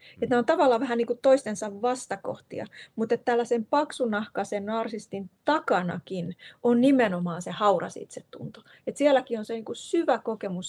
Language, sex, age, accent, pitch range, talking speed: Finnish, female, 30-49, native, 190-250 Hz, 140 wpm